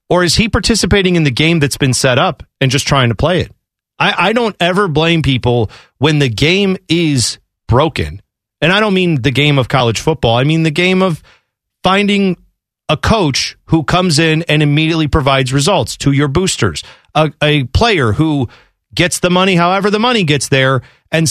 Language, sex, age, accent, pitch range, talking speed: English, male, 40-59, American, 135-185 Hz, 190 wpm